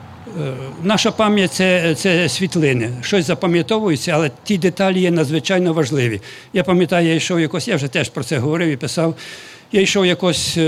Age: 60-79